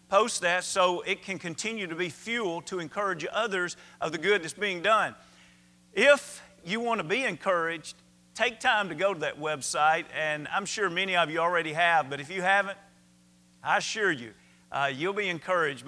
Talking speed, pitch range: 190 wpm, 150-185 Hz